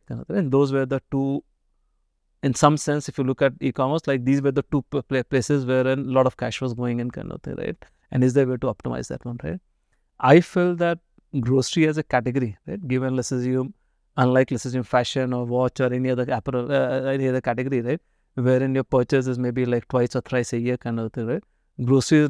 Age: 30-49